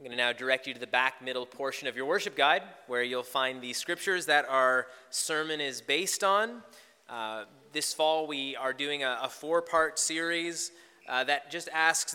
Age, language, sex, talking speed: 20-39, English, male, 200 wpm